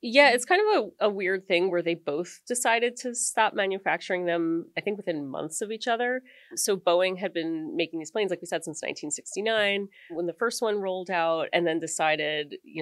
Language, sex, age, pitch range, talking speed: English, female, 30-49, 155-195 Hz, 210 wpm